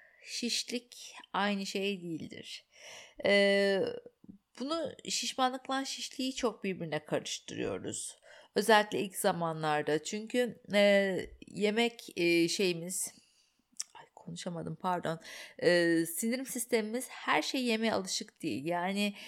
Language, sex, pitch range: Turkish, female, 185-245 Hz